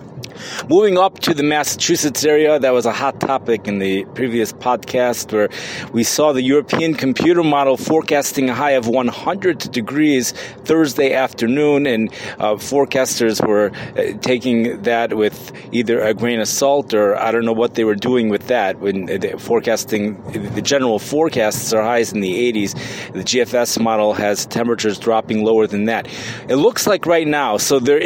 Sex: male